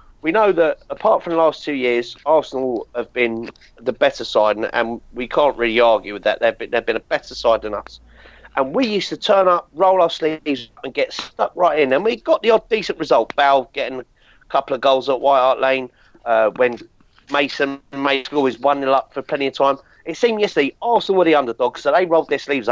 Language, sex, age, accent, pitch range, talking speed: English, male, 40-59, British, 130-175 Hz, 225 wpm